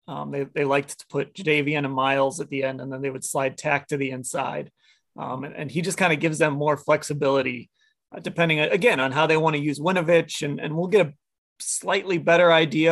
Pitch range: 135-170 Hz